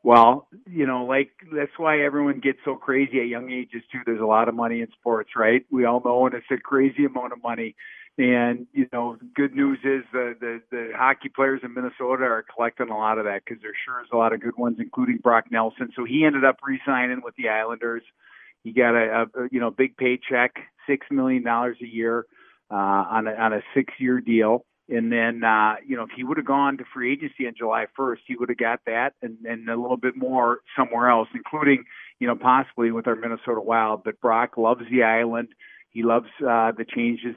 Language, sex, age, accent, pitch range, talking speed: English, male, 50-69, American, 115-130 Hz, 225 wpm